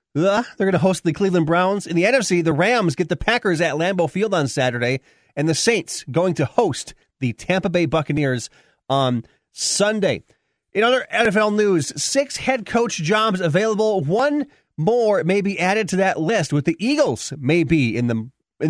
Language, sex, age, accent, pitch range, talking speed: English, male, 30-49, American, 135-195 Hz, 180 wpm